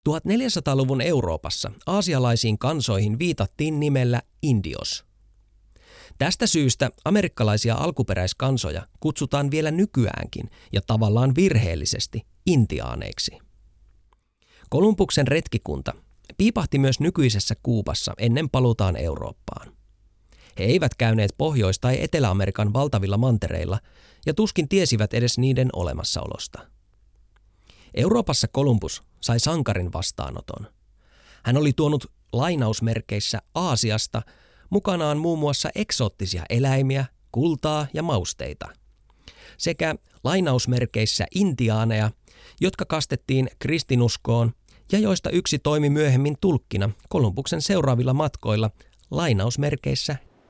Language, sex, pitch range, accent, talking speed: Finnish, male, 100-150 Hz, native, 90 wpm